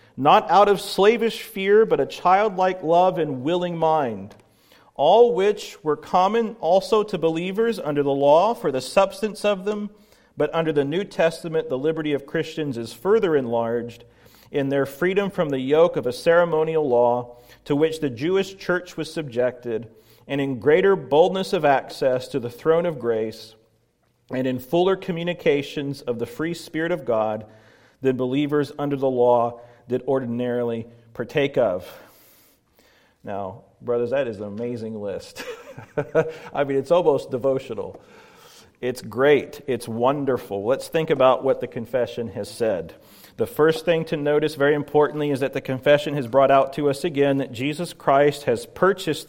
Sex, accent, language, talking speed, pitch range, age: male, American, English, 160 wpm, 125-170 Hz, 40-59